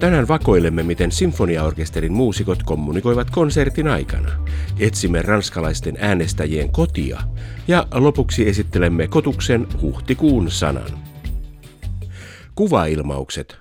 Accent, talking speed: native, 85 wpm